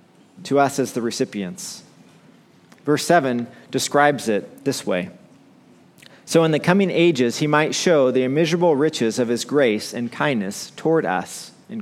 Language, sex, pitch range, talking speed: English, male, 125-160 Hz, 150 wpm